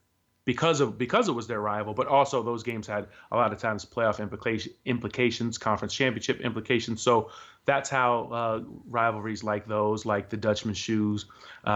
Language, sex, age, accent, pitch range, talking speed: English, male, 30-49, American, 105-125 Hz, 170 wpm